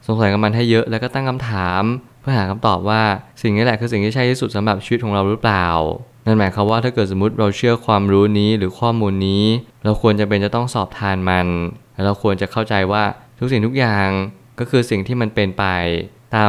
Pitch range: 100-115 Hz